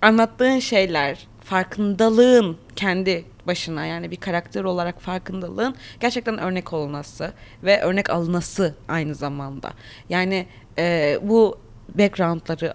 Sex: female